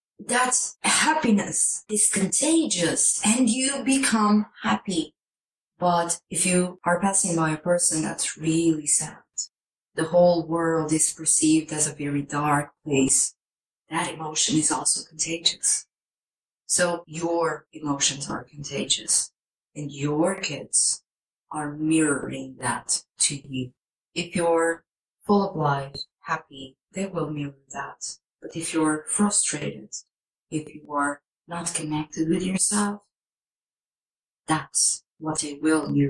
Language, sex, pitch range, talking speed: English, female, 150-175 Hz, 120 wpm